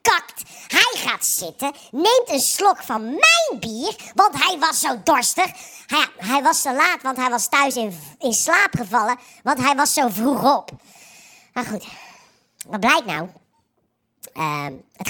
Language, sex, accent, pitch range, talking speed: Dutch, male, Dutch, 185-270 Hz, 155 wpm